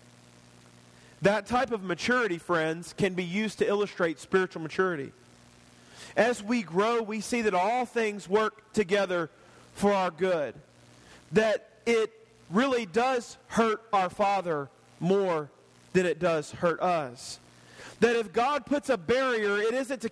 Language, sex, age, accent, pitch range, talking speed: English, male, 40-59, American, 155-230 Hz, 140 wpm